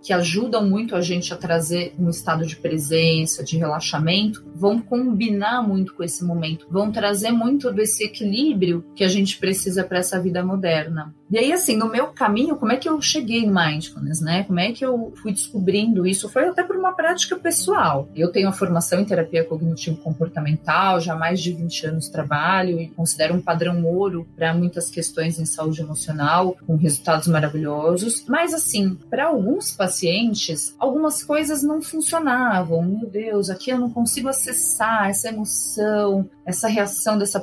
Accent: Brazilian